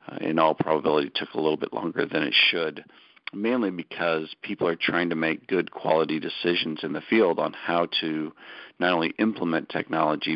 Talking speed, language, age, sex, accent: 180 wpm, English, 50-69, male, American